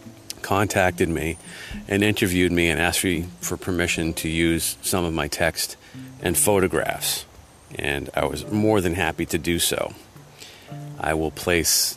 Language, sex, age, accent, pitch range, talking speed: English, male, 40-59, American, 85-100 Hz, 150 wpm